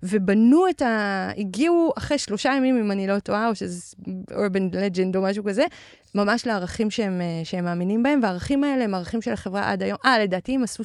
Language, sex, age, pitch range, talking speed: Hebrew, female, 20-39, 185-230 Hz, 200 wpm